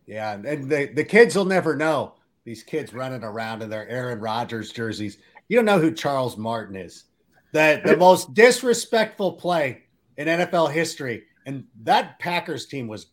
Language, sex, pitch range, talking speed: English, male, 125-195 Hz, 170 wpm